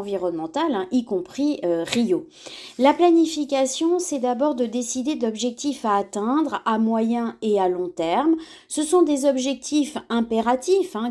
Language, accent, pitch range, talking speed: French, French, 230-305 Hz, 140 wpm